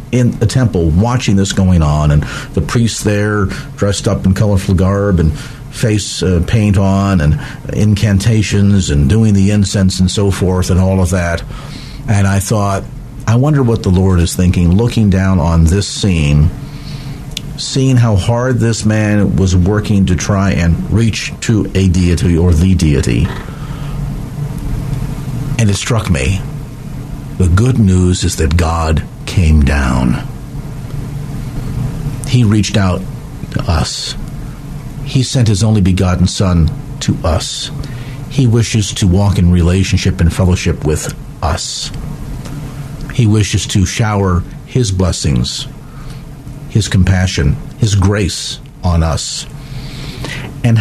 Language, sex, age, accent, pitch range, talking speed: English, male, 50-69, American, 95-135 Hz, 135 wpm